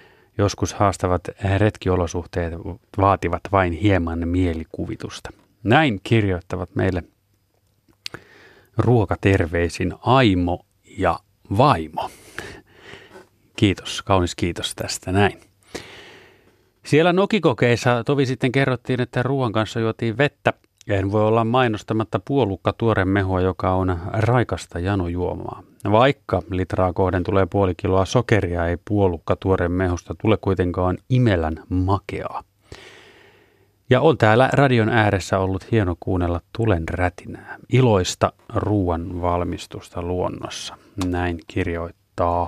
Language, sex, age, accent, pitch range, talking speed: Finnish, male, 30-49, native, 90-115 Hz, 95 wpm